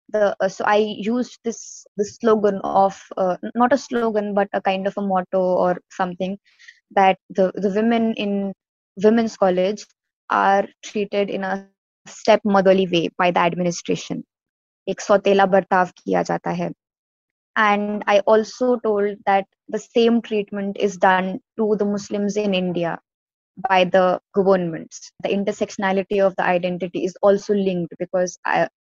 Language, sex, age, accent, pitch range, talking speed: English, female, 20-39, Indian, 185-210 Hz, 135 wpm